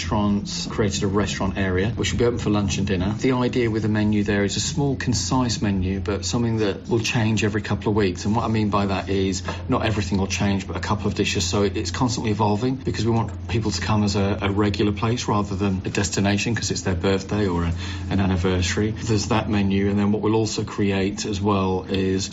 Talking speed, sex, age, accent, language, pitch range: 230 wpm, male, 40-59, British, English, 95-105 Hz